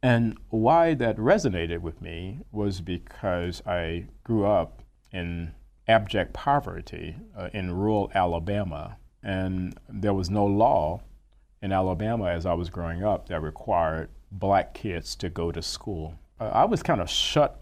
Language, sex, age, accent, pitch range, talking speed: English, male, 40-59, American, 85-105 Hz, 150 wpm